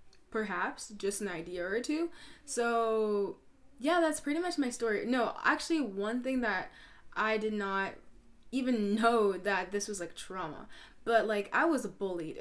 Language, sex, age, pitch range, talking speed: English, female, 10-29, 195-230 Hz, 160 wpm